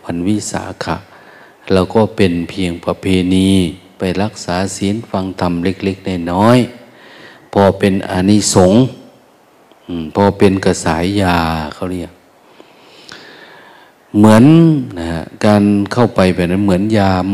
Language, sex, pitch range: Thai, male, 90-105 Hz